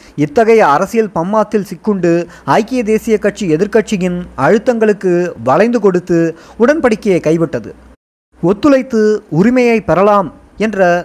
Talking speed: 90 wpm